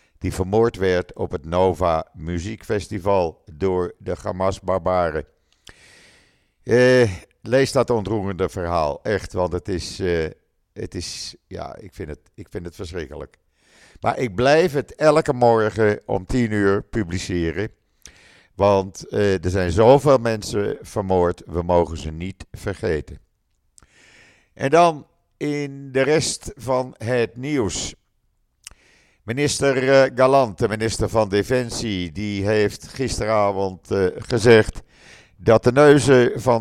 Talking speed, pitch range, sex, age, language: 120 wpm, 90-115 Hz, male, 50-69, Dutch